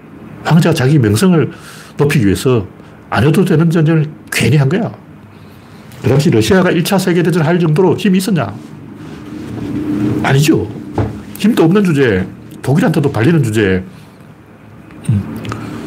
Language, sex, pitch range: Korean, male, 130-180 Hz